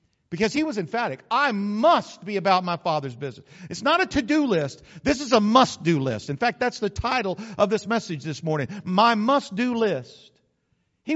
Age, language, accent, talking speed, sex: 50-69, English, American, 190 wpm, male